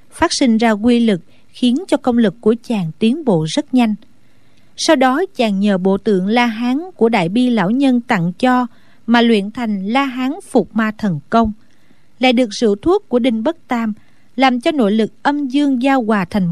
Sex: female